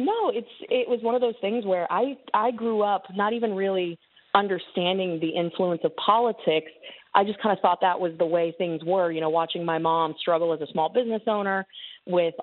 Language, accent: English, American